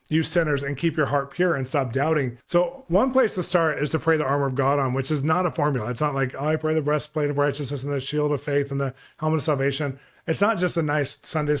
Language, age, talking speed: English, 30-49, 275 wpm